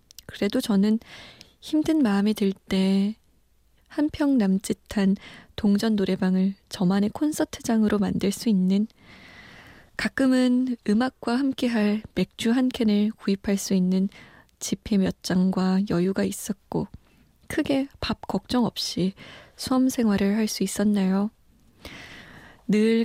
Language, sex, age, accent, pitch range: Korean, female, 20-39, native, 195-230 Hz